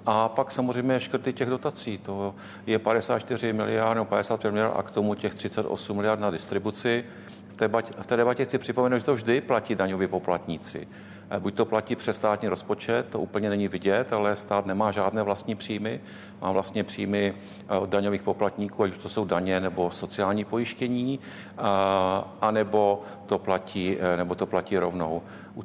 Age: 50-69